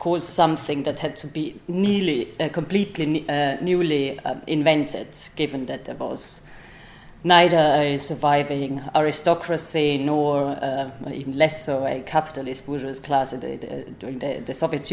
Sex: female